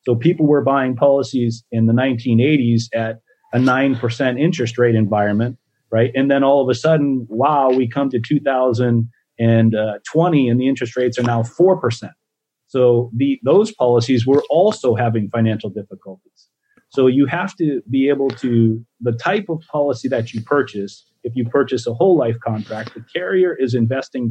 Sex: male